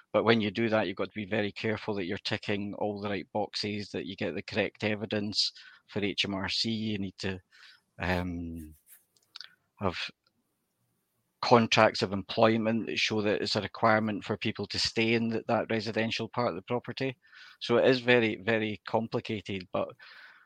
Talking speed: 175 wpm